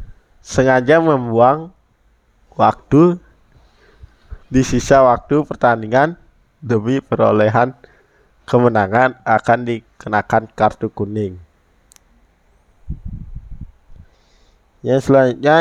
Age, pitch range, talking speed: 20-39, 110-135 Hz, 60 wpm